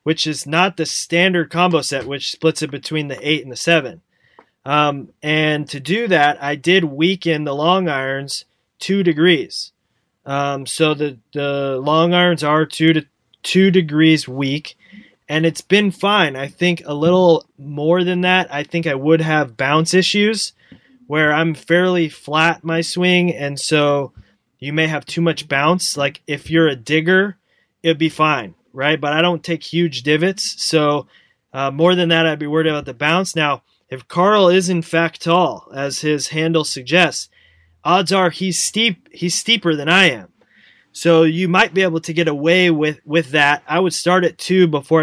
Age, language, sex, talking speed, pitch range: 20-39, English, male, 180 wpm, 145-175 Hz